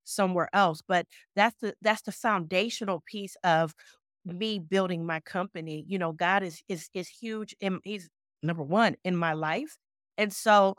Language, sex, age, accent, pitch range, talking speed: English, female, 30-49, American, 180-225 Hz, 165 wpm